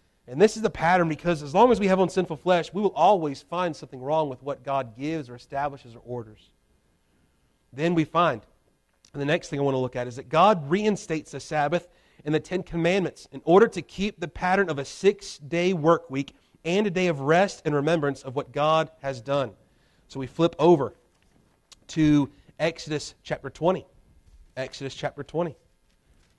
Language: English